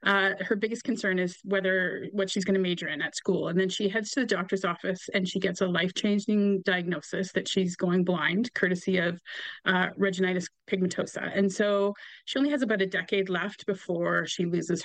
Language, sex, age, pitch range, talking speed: English, female, 30-49, 180-205 Hz, 200 wpm